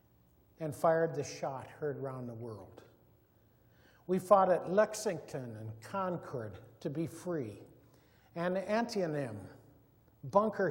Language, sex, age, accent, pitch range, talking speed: English, male, 60-79, American, 135-185 Hz, 110 wpm